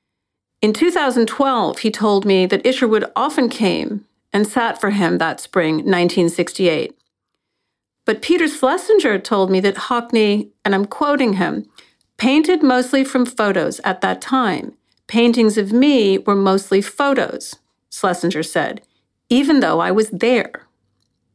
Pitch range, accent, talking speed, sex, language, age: 195-270 Hz, American, 125 wpm, female, English, 50-69